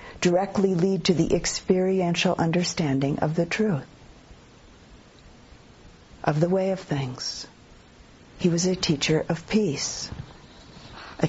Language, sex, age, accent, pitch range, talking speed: English, female, 50-69, American, 160-205 Hz, 110 wpm